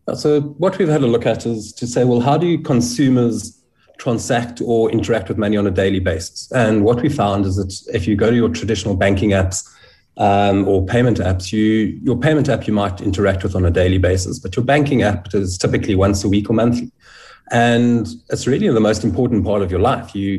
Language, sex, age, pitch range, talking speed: English, male, 30-49, 100-120 Hz, 220 wpm